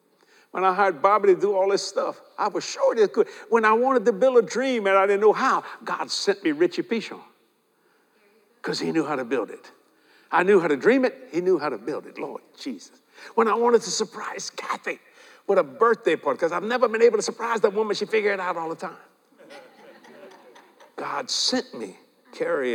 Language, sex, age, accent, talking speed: English, male, 60-79, American, 215 wpm